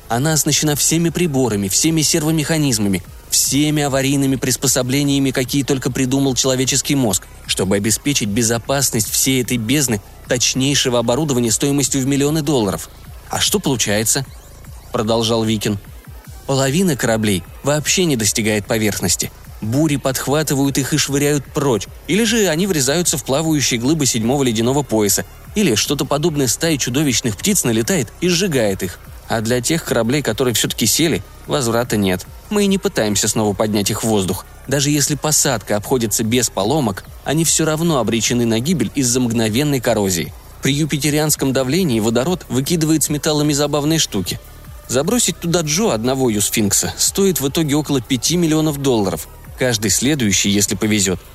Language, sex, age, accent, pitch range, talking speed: Russian, male, 20-39, native, 110-150 Hz, 140 wpm